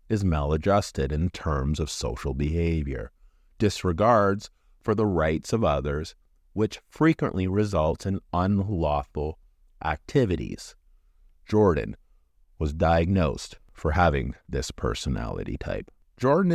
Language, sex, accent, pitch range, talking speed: English, male, American, 80-115 Hz, 100 wpm